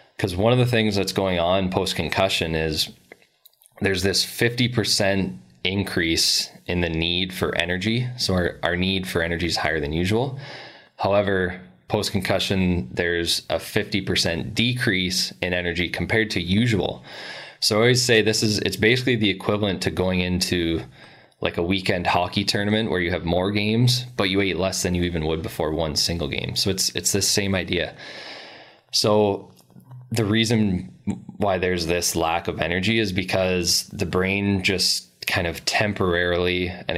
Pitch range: 85-105 Hz